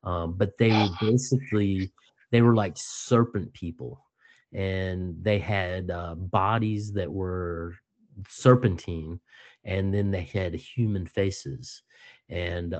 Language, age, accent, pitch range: English, 30-49, American, 85-100 Hz